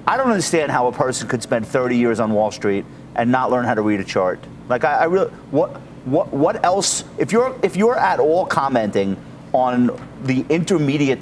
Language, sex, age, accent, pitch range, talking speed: English, male, 30-49, American, 125-170 Hz, 210 wpm